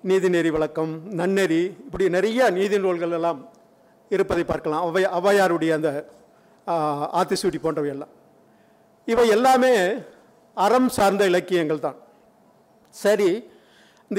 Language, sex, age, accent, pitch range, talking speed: Tamil, male, 50-69, native, 180-220 Hz, 85 wpm